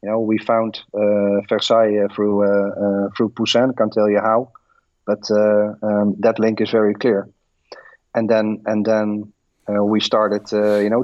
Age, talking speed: 40-59, 180 wpm